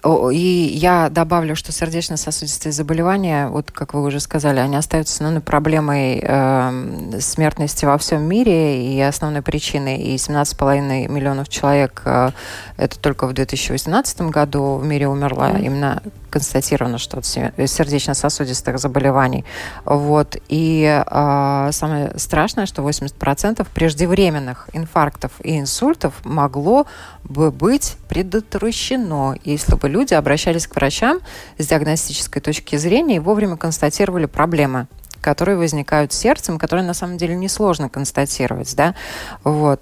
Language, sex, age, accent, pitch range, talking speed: Russian, female, 20-39, native, 140-165 Hz, 120 wpm